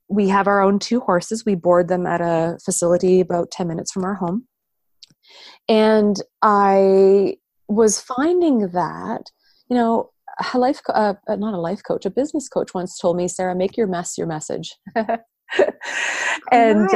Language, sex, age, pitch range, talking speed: English, female, 30-49, 170-225 Hz, 160 wpm